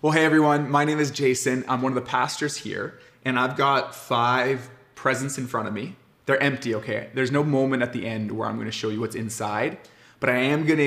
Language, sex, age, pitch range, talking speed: English, male, 20-39, 115-140 Hz, 245 wpm